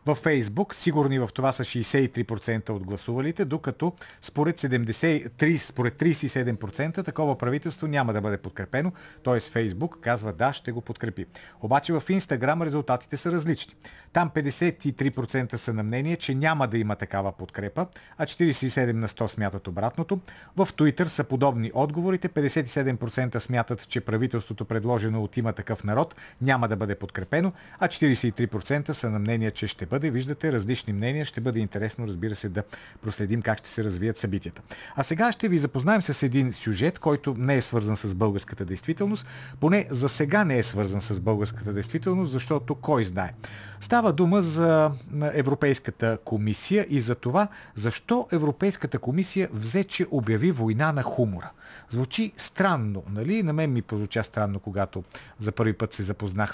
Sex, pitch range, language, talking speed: male, 110-155 Hz, Bulgarian, 160 wpm